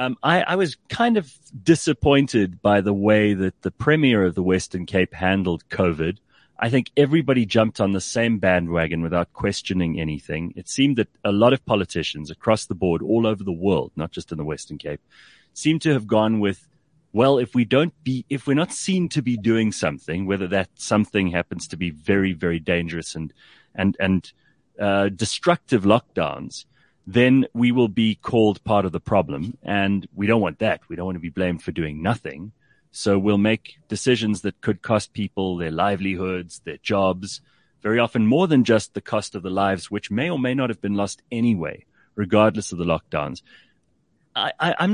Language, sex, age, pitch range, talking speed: English, male, 30-49, 95-130 Hz, 190 wpm